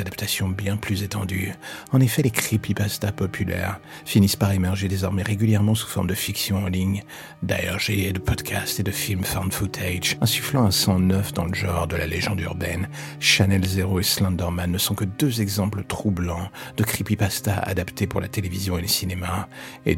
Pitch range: 95-110 Hz